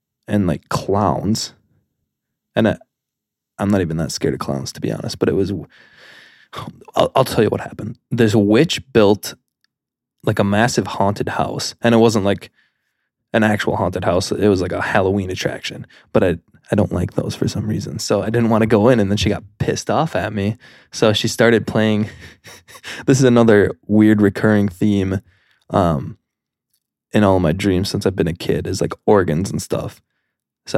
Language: English